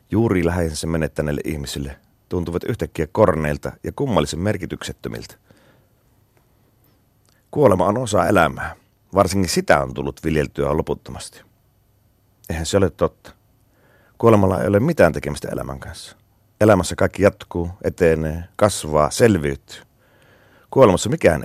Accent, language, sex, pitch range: native, Finnish, male, 80-110 Hz